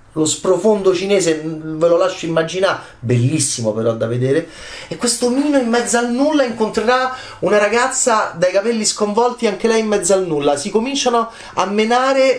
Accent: native